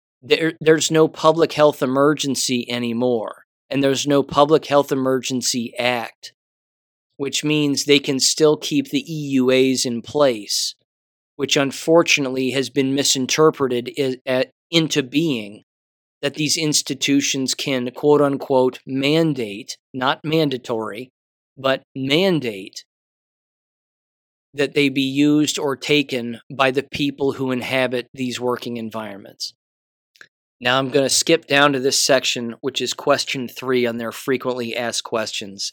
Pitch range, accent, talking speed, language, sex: 120-140 Hz, American, 120 wpm, English, male